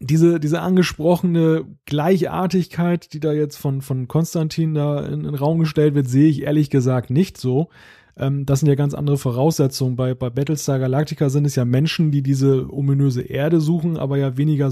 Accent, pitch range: German, 130-155 Hz